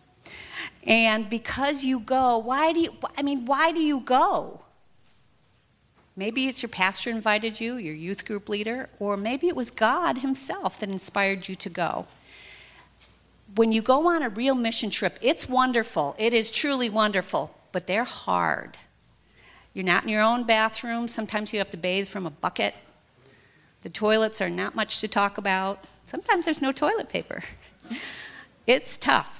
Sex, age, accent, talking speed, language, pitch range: female, 40-59, American, 165 wpm, English, 190-240 Hz